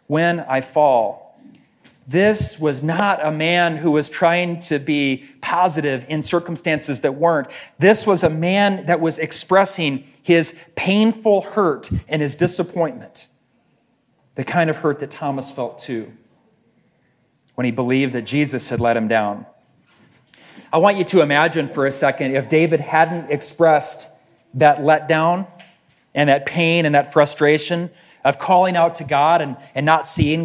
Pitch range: 140-170 Hz